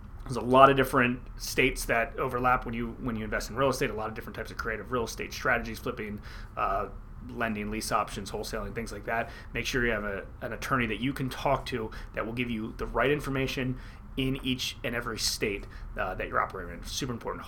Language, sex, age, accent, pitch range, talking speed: English, male, 30-49, American, 110-135 Hz, 225 wpm